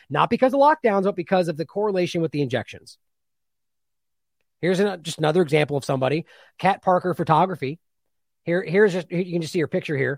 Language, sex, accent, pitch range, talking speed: English, male, American, 140-200 Hz, 190 wpm